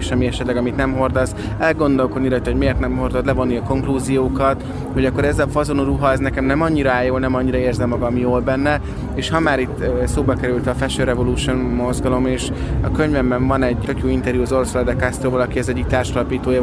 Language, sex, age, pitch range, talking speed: Hungarian, male, 20-39, 125-135 Hz, 200 wpm